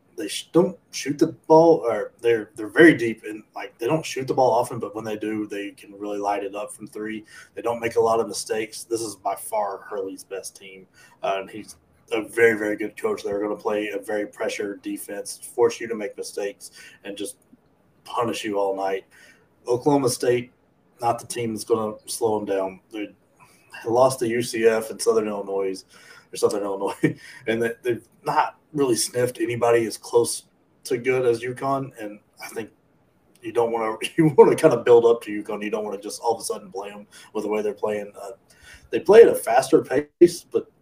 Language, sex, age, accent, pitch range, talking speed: English, male, 20-39, American, 105-150 Hz, 210 wpm